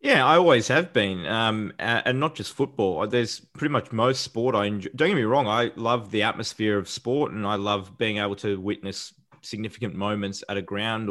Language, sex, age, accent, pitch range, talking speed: English, male, 20-39, Australian, 105-135 Hz, 210 wpm